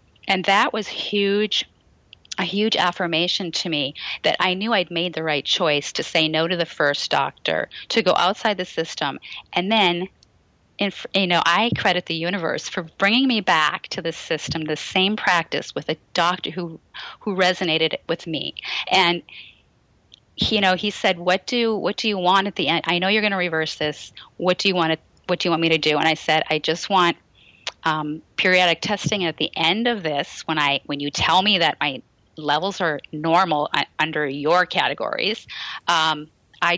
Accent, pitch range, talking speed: American, 160-195 Hz, 195 wpm